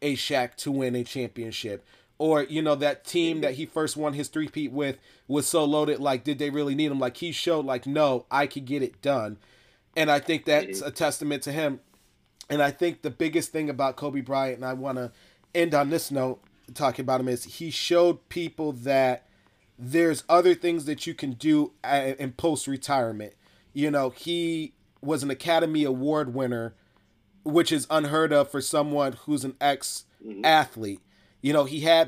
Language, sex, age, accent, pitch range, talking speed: English, male, 30-49, American, 130-155 Hz, 185 wpm